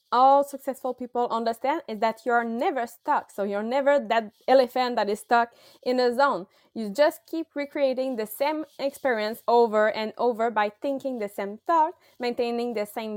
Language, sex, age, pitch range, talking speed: English, female, 20-39, 220-285 Hz, 175 wpm